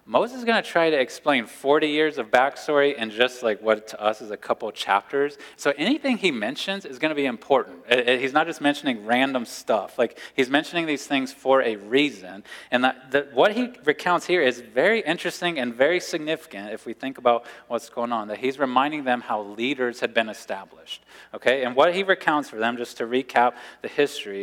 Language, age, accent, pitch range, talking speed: English, 20-39, American, 120-150 Hz, 215 wpm